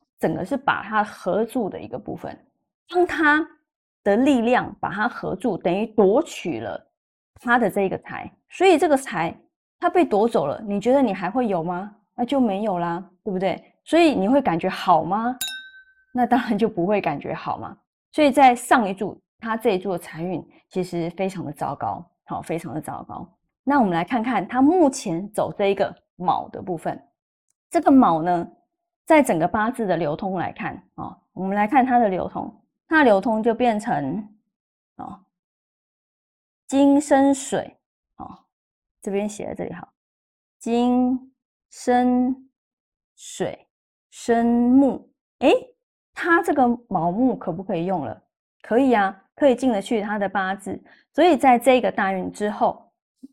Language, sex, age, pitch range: Chinese, female, 20-39, 195-270 Hz